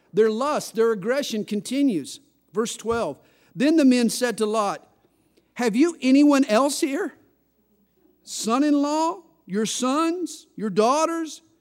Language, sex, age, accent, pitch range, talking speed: English, male, 50-69, American, 195-280 Hz, 120 wpm